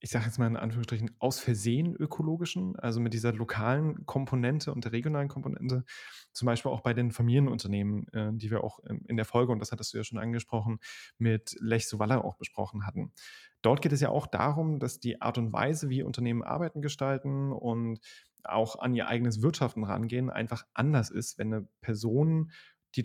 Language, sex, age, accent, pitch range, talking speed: German, male, 30-49, German, 115-130 Hz, 185 wpm